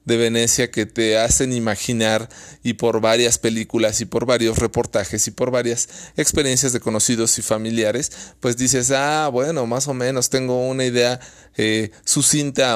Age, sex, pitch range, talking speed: 30-49, male, 110-135 Hz, 160 wpm